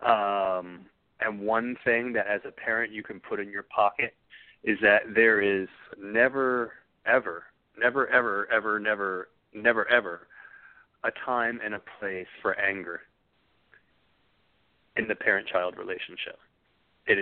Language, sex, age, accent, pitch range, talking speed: English, male, 30-49, American, 95-120 Hz, 130 wpm